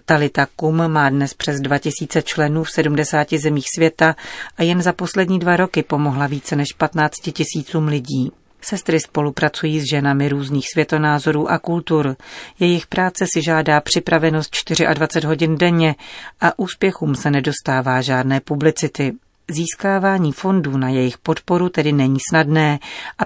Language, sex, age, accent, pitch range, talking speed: Czech, female, 40-59, native, 145-170 Hz, 140 wpm